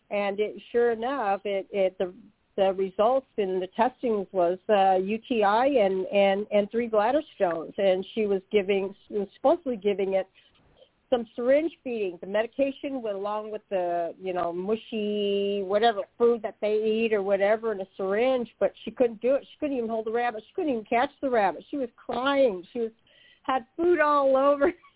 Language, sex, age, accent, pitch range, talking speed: English, female, 50-69, American, 195-250 Hz, 190 wpm